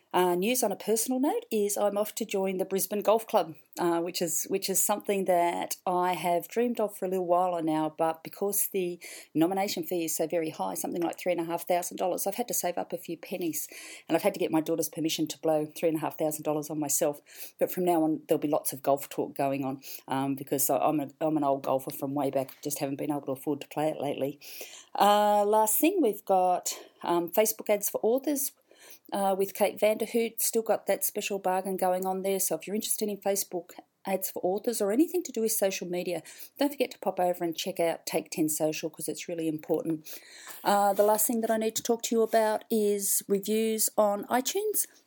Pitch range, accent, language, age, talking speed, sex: 165-215 Hz, Australian, English, 40-59, 220 wpm, female